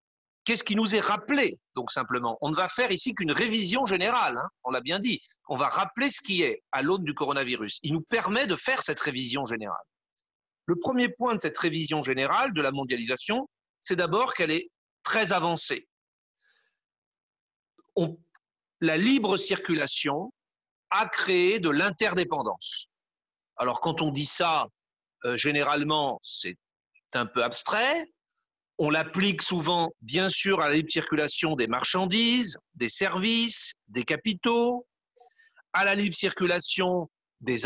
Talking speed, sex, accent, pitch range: 150 wpm, male, French, 155-235 Hz